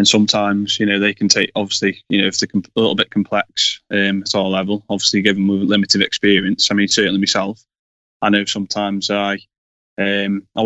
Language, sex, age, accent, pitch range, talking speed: English, male, 10-29, British, 100-105 Hz, 205 wpm